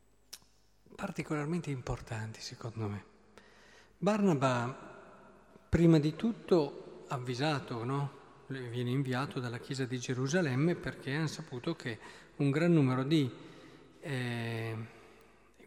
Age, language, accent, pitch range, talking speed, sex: 40-59, Italian, native, 125-175 Hz, 95 wpm, male